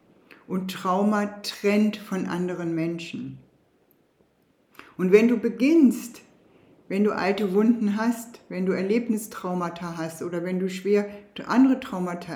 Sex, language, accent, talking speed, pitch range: female, German, German, 120 wpm, 175-220 Hz